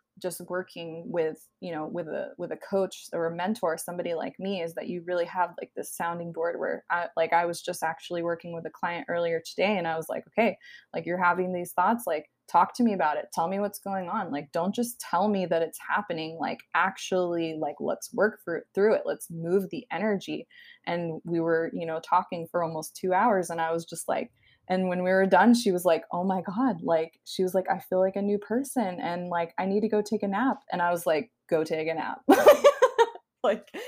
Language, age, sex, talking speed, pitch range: English, 20-39, female, 230 wpm, 165-200 Hz